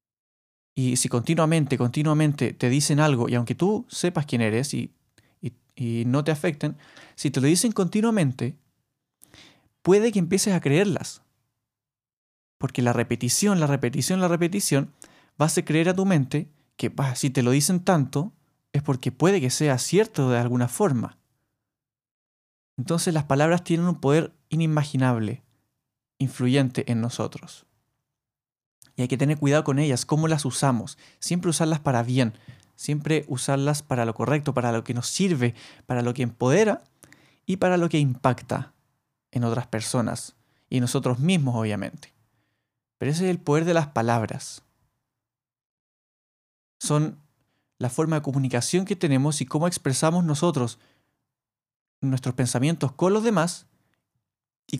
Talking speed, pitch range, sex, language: 145 wpm, 125-155 Hz, male, Spanish